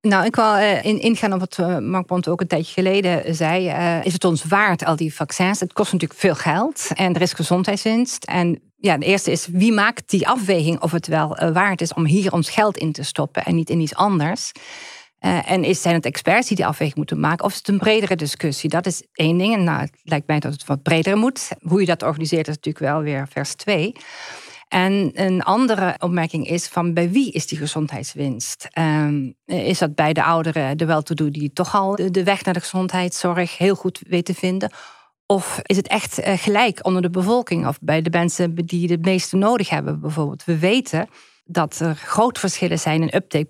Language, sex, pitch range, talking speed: Dutch, female, 160-190 Hz, 210 wpm